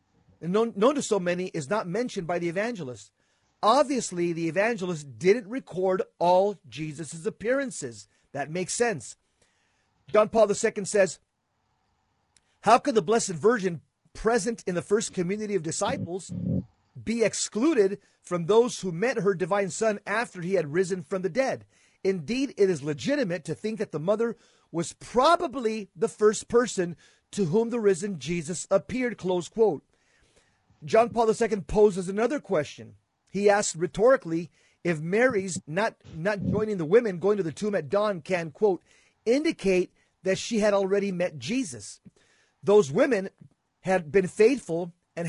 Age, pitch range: 40-59, 175-220 Hz